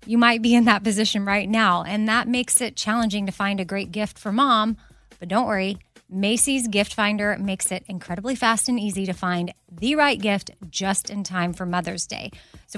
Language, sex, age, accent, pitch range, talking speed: English, female, 20-39, American, 200-245 Hz, 205 wpm